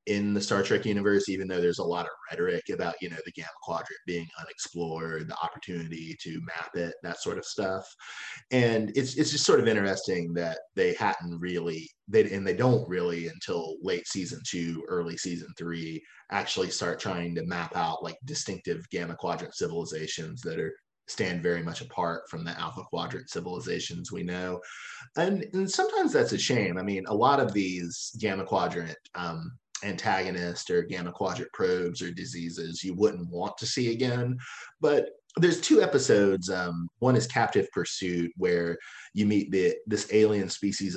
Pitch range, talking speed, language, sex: 85-115 Hz, 175 wpm, English, male